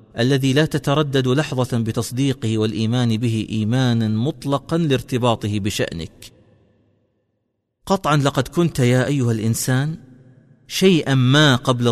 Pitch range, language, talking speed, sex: 115-140 Hz, Arabic, 100 wpm, male